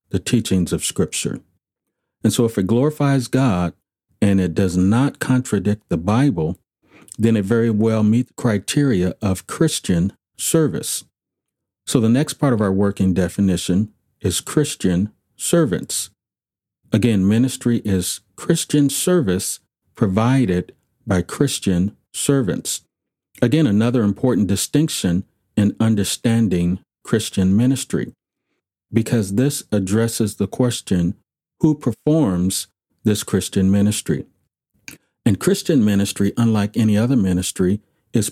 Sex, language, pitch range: male, English, 95-125 Hz